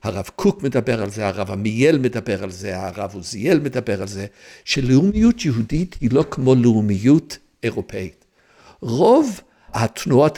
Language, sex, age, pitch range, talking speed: Hebrew, male, 60-79, 115-185 Hz, 140 wpm